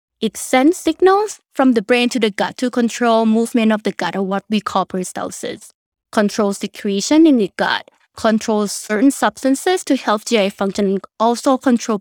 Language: English